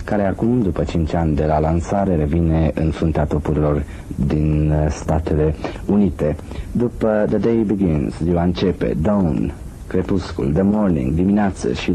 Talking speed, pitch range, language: 135 wpm, 80-95 Hz, Romanian